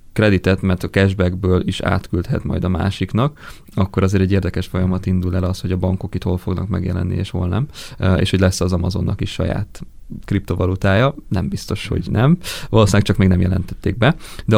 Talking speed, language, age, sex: 190 wpm, Hungarian, 20-39, male